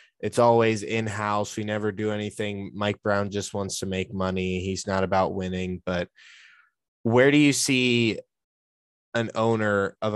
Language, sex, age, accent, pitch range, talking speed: English, male, 20-39, American, 95-120 Hz, 160 wpm